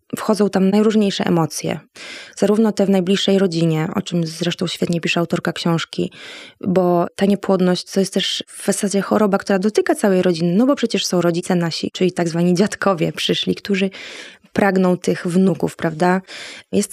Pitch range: 175-205 Hz